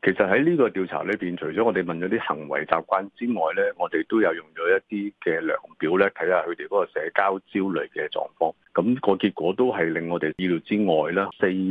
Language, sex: Chinese, male